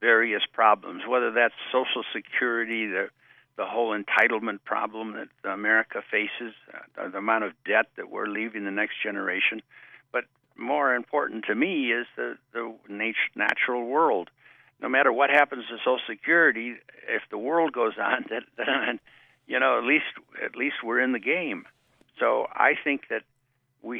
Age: 60-79